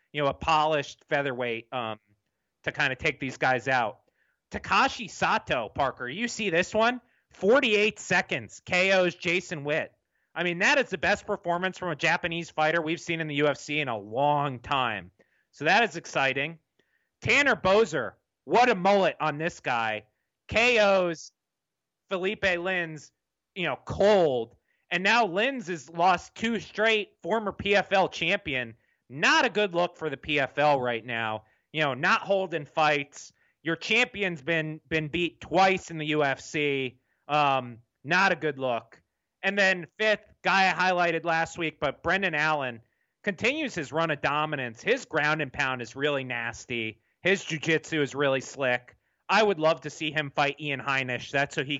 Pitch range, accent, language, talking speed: 135-185 Hz, American, English, 165 wpm